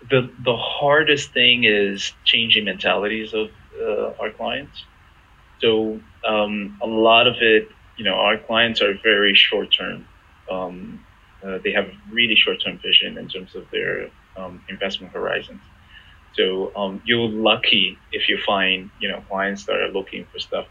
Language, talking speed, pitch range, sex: English, 160 wpm, 95-115 Hz, male